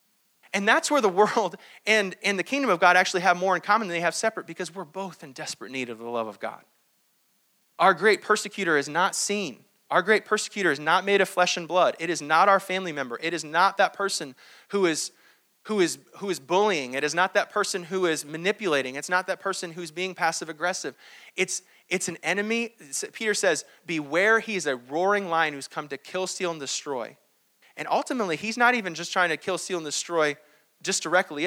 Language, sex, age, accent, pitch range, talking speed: English, male, 30-49, American, 165-205 Hz, 215 wpm